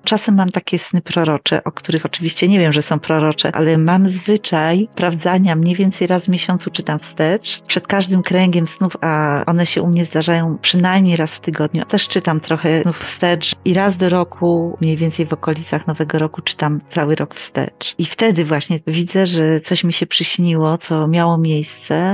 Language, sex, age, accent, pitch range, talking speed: Polish, female, 40-59, native, 150-180 Hz, 185 wpm